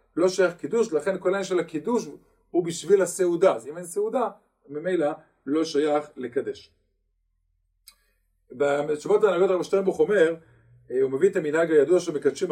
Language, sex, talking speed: Hebrew, male, 145 wpm